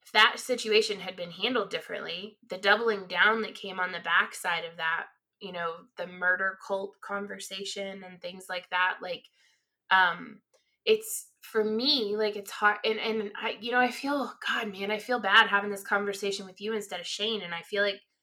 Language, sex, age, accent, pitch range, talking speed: English, female, 20-39, American, 190-220 Hz, 195 wpm